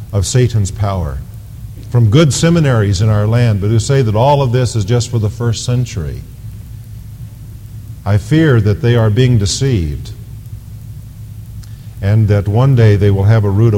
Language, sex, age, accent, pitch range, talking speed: English, male, 50-69, American, 105-130 Hz, 165 wpm